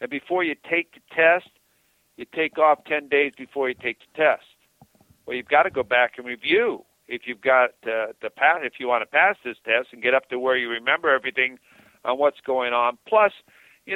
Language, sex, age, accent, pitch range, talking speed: English, male, 50-69, American, 115-130 Hz, 220 wpm